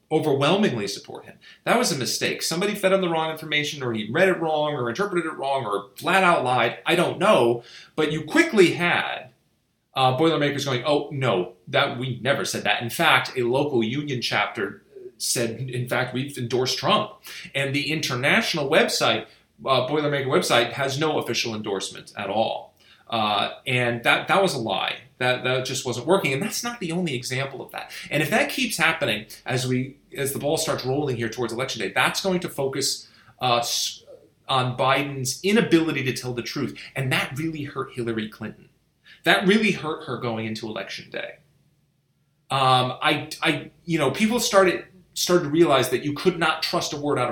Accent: American